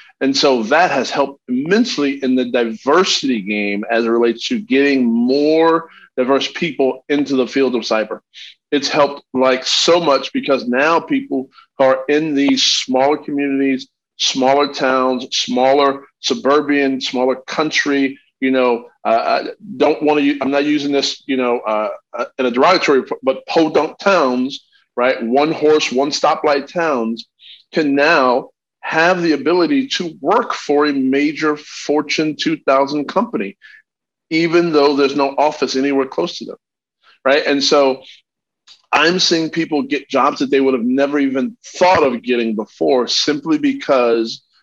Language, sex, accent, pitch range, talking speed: English, male, American, 130-150 Hz, 145 wpm